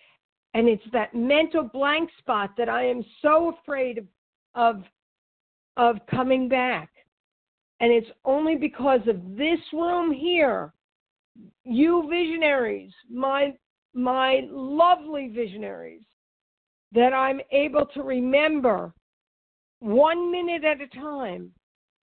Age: 50-69